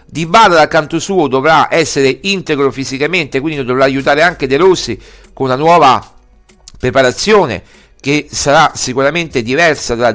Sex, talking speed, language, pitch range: male, 140 wpm, Italian, 135-180 Hz